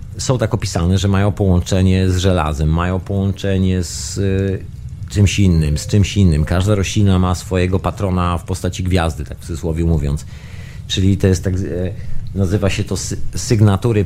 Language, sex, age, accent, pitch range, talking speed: Polish, male, 40-59, native, 90-110 Hz, 155 wpm